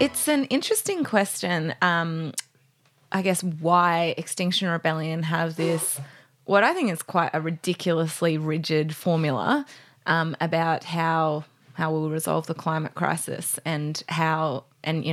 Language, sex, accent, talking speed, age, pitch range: English, female, Australian, 140 wpm, 20-39, 160-180 Hz